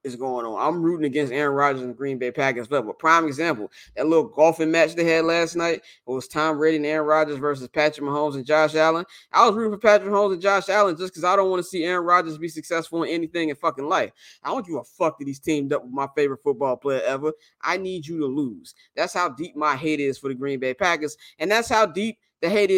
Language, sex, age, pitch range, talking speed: English, male, 20-39, 145-190 Hz, 265 wpm